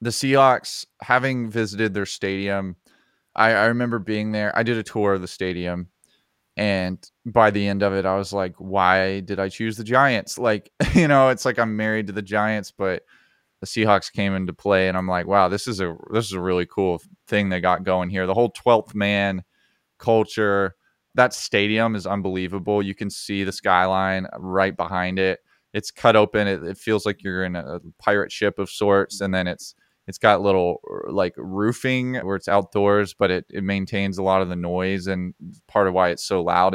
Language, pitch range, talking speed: English, 95-110 Hz, 200 wpm